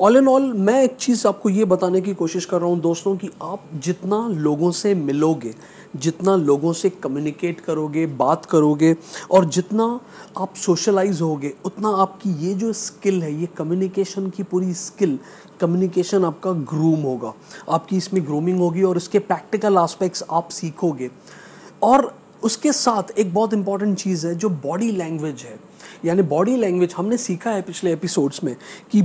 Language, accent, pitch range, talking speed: Hindi, native, 165-200 Hz, 165 wpm